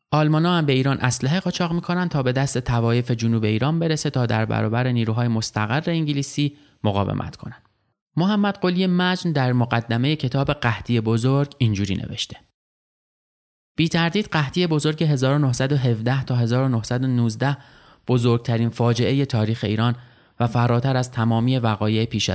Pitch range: 115-135 Hz